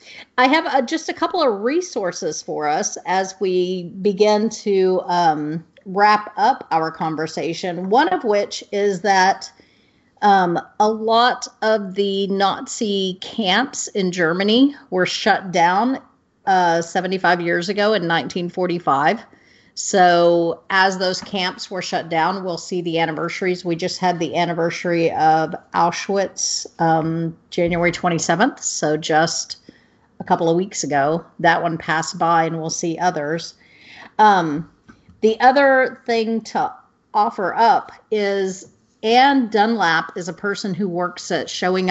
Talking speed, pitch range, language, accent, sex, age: 135 wpm, 170-210 Hz, English, American, female, 40-59